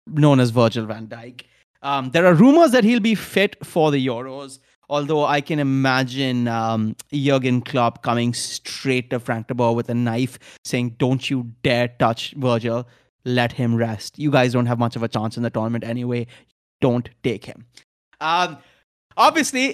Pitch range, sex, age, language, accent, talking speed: 120-150 Hz, male, 30-49, English, Indian, 175 wpm